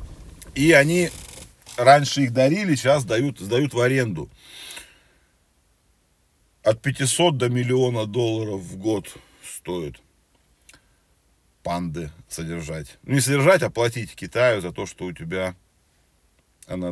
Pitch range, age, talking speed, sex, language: 100-140 Hz, 40-59, 110 wpm, male, Russian